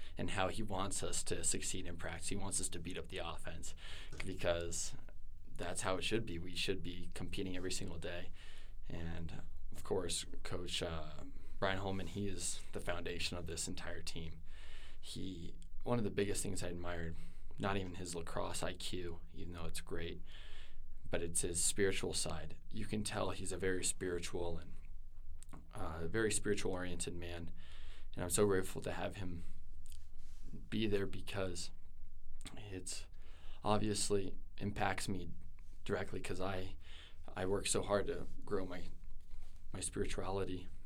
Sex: male